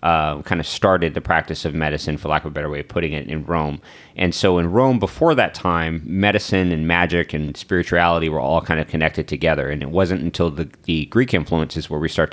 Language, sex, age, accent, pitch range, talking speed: English, male, 30-49, American, 80-90 Hz, 235 wpm